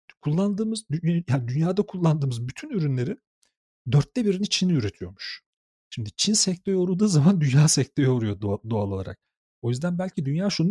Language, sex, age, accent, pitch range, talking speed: Turkish, male, 40-59, native, 120-175 Hz, 140 wpm